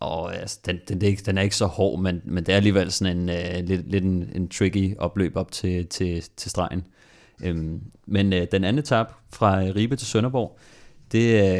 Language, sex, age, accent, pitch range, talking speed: Danish, male, 30-49, native, 95-105 Hz, 205 wpm